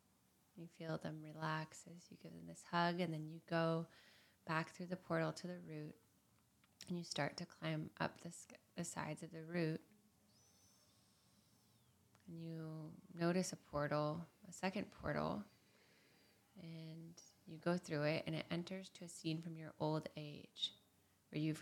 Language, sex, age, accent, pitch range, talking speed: English, female, 20-39, American, 150-170 Hz, 160 wpm